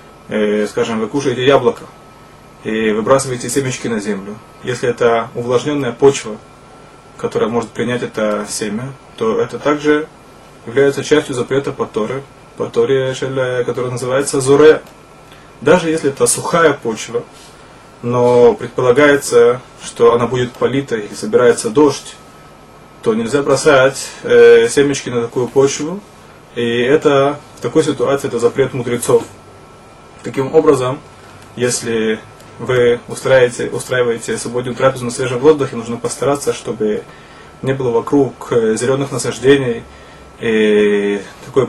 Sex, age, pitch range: male, 20-39, 120-150 Hz